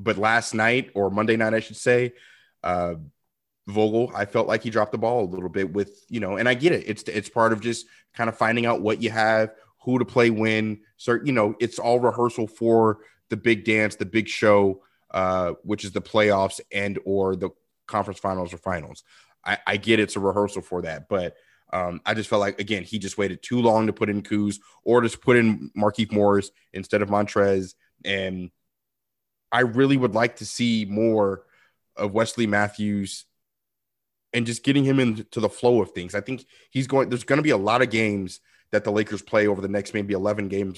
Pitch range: 100-115 Hz